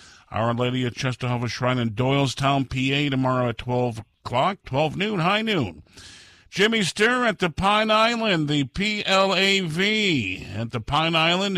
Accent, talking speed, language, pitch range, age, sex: American, 145 wpm, English, 125-170 Hz, 50-69, male